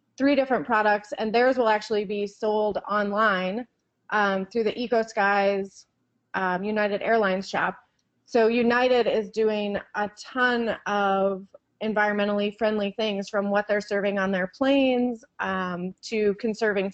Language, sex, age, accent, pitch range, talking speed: English, female, 30-49, American, 200-230 Hz, 140 wpm